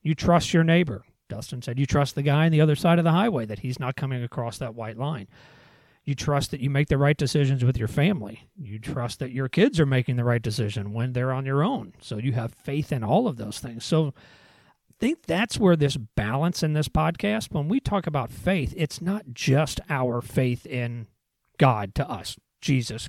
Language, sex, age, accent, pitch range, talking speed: English, male, 40-59, American, 115-150 Hz, 220 wpm